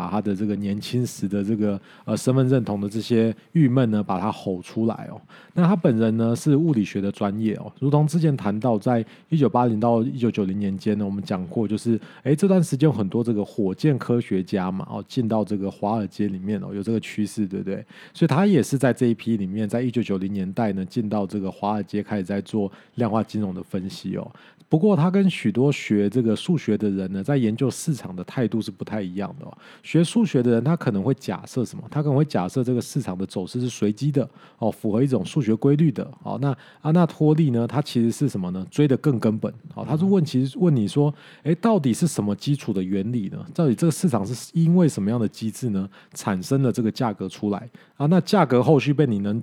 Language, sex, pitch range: Chinese, male, 105-145 Hz